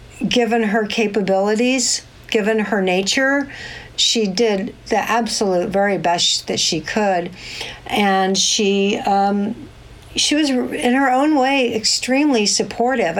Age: 60-79